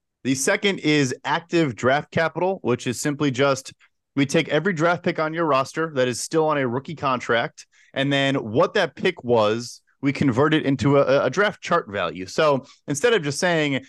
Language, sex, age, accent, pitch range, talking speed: English, male, 30-49, American, 135-165 Hz, 195 wpm